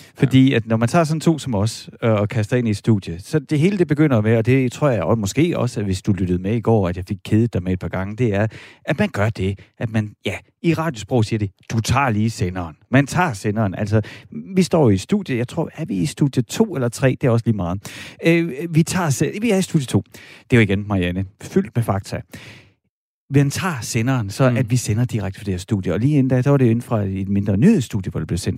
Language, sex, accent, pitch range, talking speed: Danish, male, native, 105-140 Hz, 270 wpm